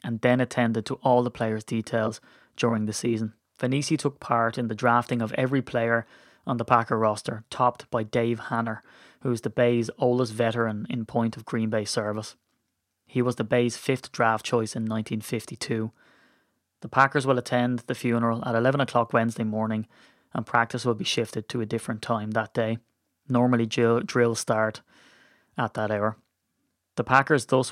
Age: 20-39